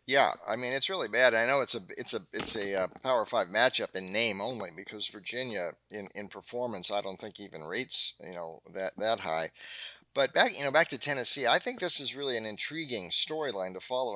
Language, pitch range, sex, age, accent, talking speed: English, 95-120 Hz, male, 50-69, American, 225 wpm